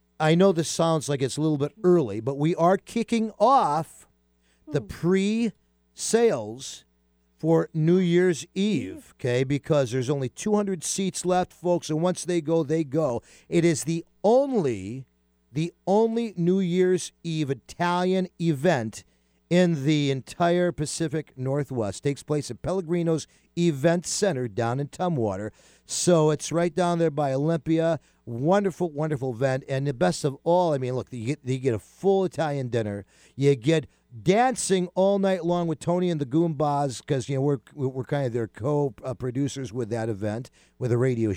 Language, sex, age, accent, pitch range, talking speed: English, male, 50-69, American, 130-180 Hz, 160 wpm